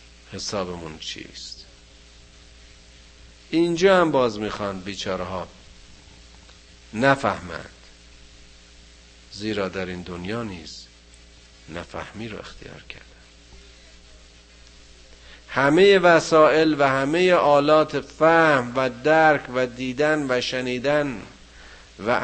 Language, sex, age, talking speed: Persian, male, 50-69, 80 wpm